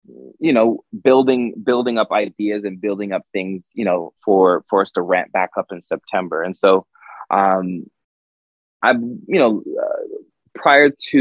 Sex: male